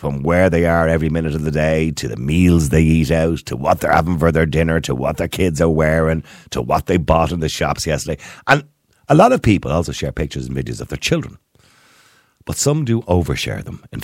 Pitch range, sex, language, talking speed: 75-110 Hz, male, English, 235 wpm